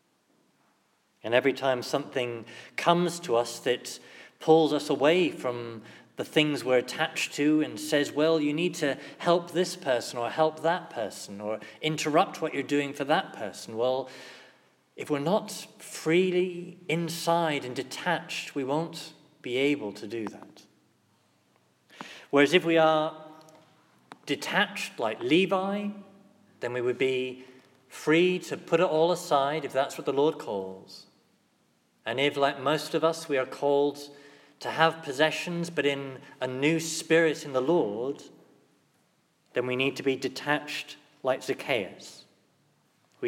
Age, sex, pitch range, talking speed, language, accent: 40-59, male, 130-160 Hz, 145 wpm, English, British